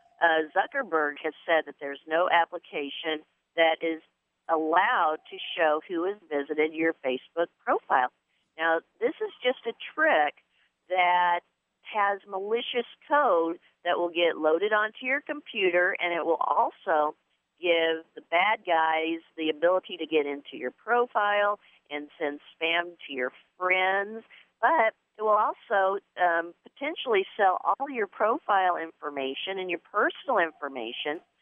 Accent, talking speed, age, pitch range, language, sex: American, 140 wpm, 50-69, 165-220 Hz, English, female